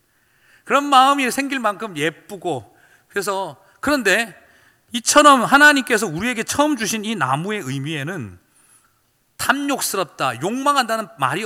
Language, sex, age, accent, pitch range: Korean, male, 40-59, native, 130-215 Hz